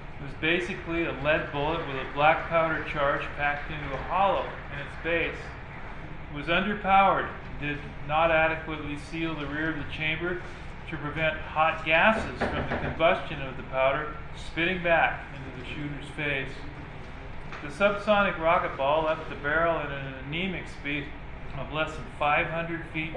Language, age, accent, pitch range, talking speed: English, 40-59, American, 140-165 Hz, 165 wpm